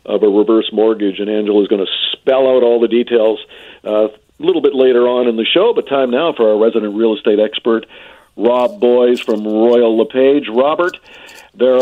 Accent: American